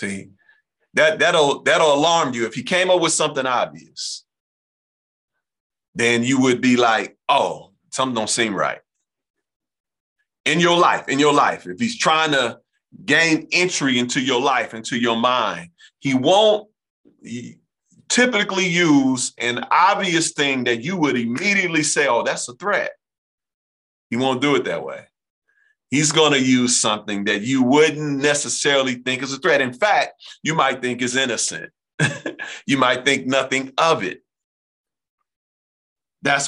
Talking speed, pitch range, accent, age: 145 wpm, 125-170 Hz, American, 40-59